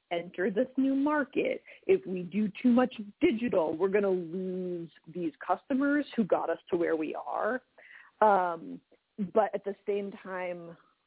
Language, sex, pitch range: English, female, 165-220 Hz